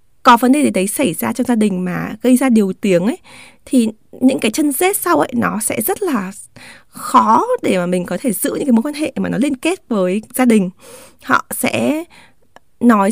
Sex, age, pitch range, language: female, 20-39, 195-260 Hz, Vietnamese